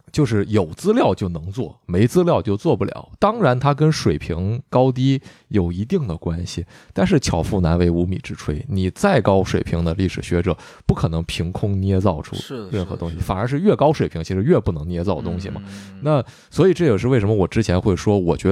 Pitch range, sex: 90-120 Hz, male